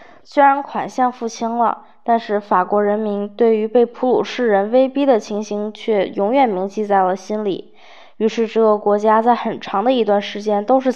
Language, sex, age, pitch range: Chinese, female, 20-39, 205-240 Hz